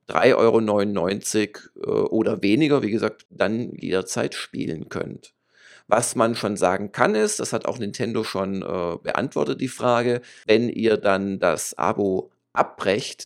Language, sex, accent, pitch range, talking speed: German, male, German, 105-140 Hz, 135 wpm